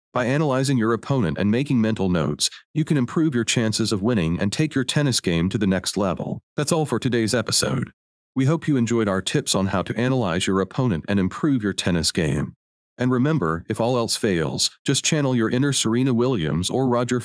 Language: English